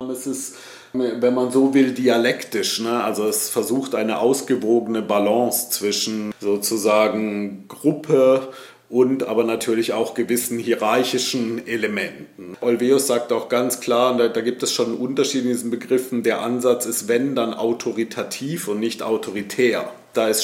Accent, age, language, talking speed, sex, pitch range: German, 40-59, German, 145 wpm, male, 115-125 Hz